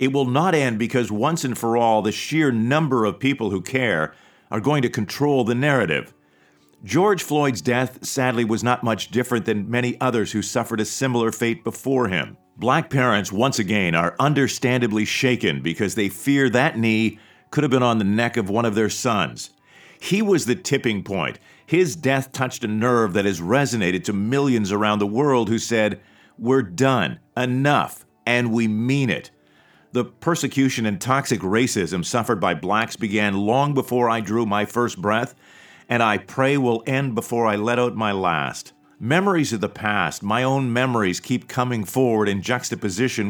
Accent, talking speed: American, 180 wpm